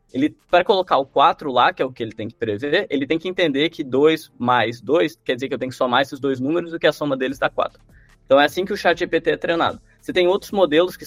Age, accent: 20-39, Brazilian